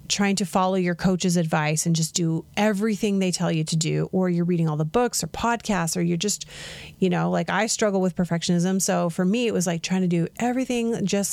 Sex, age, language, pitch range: female, 30-49, English, 165-200 Hz